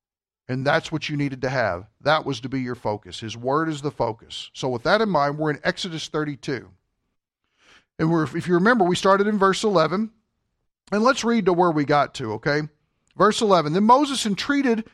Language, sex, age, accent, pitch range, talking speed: English, male, 50-69, American, 155-260 Hz, 205 wpm